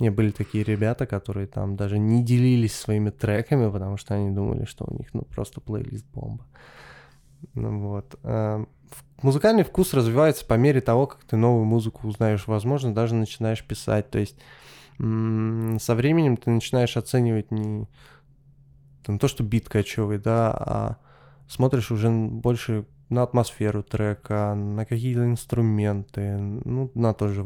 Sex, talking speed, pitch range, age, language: male, 145 wpm, 105-130 Hz, 20-39, Russian